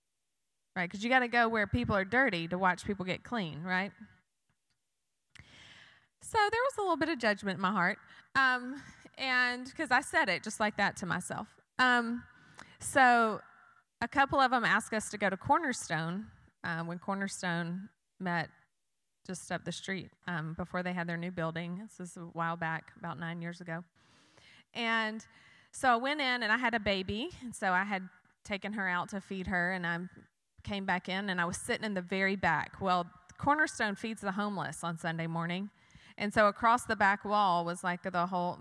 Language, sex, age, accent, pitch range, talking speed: English, female, 20-39, American, 180-230 Hz, 195 wpm